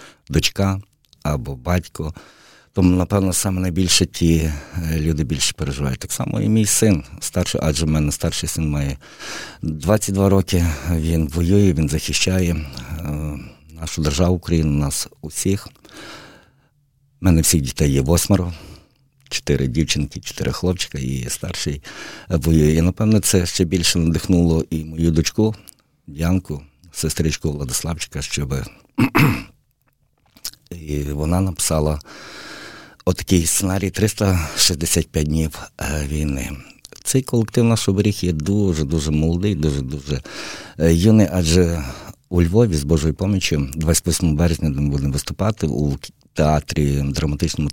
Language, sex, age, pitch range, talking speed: Ukrainian, male, 50-69, 75-95 Hz, 115 wpm